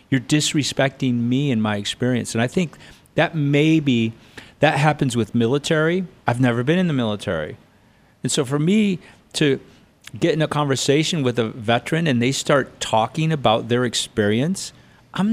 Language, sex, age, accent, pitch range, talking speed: English, male, 40-59, American, 115-150 Hz, 160 wpm